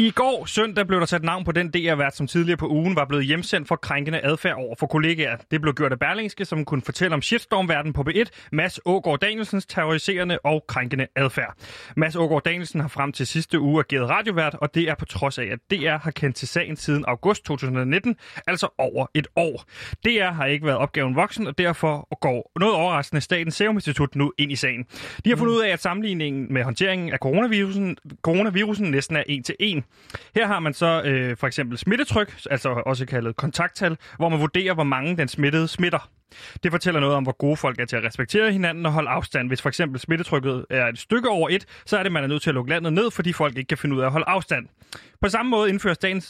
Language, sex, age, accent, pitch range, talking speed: Danish, male, 30-49, native, 140-185 Hz, 225 wpm